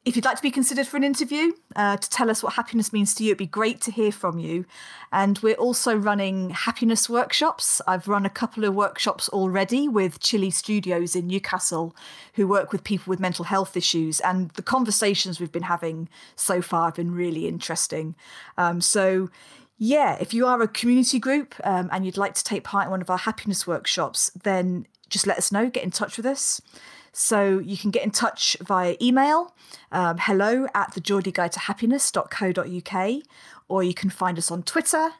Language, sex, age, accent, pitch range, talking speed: English, female, 40-59, British, 180-235 Hz, 195 wpm